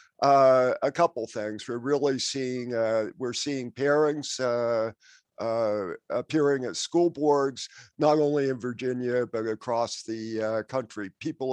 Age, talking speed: 50-69, 140 wpm